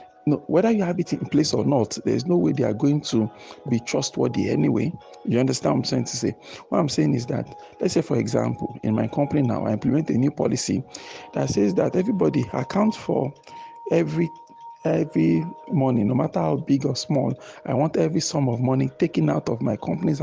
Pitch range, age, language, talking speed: 125-175 Hz, 50-69, English, 210 wpm